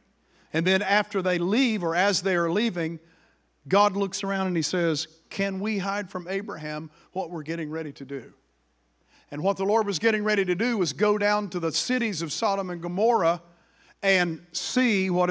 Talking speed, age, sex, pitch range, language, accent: 190 wpm, 50-69, male, 170-255 Hz, English, American